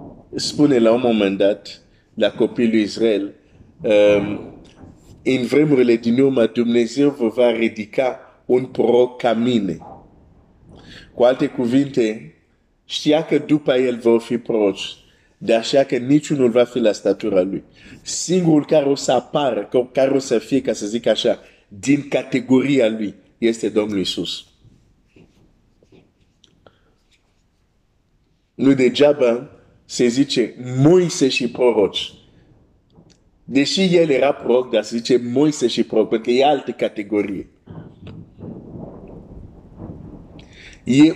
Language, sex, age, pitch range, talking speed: Romanian, male, 50-69, 110-135 Hz, 115 wpm